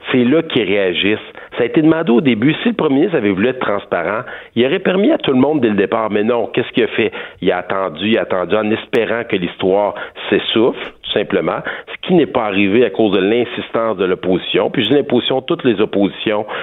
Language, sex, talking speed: French, male, 235 wpm